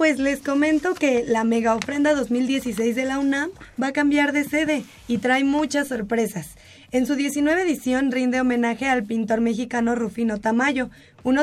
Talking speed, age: 170 wpm, 20-39